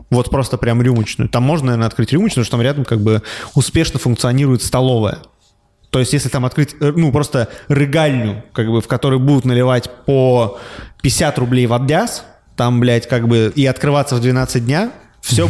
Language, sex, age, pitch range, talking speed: Russian, male, 20-39, 125-175 Hz, 180 wpm